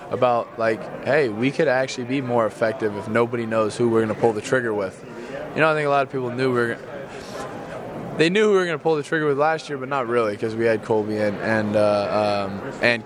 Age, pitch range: 20-39, 115-130 Hz